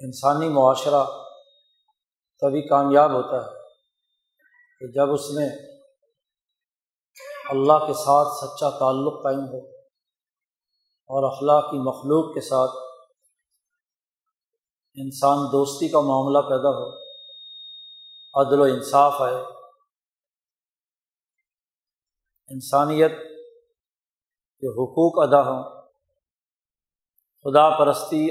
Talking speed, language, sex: 85 wpm, Urdu, male